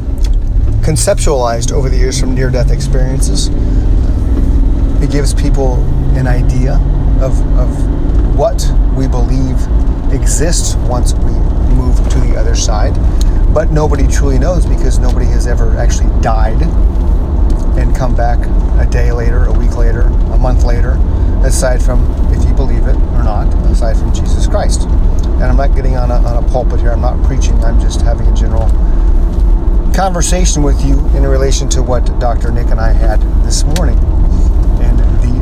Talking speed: 160 wpm